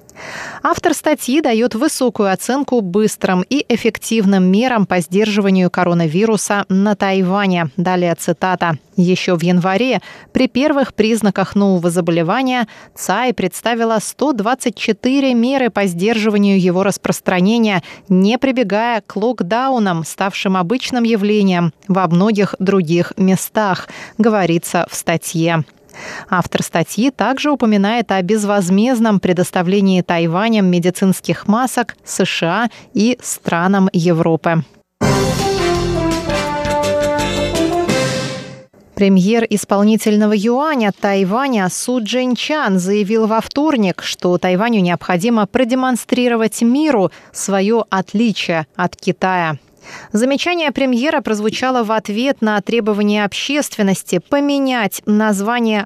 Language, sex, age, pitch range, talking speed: Russian, female, 20-39, 185-235 Hz, 95 wpm